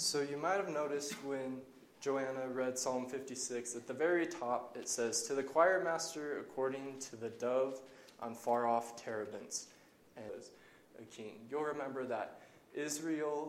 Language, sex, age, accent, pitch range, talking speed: English, male, 20-39, American, 120-140 Hz, 165 wpm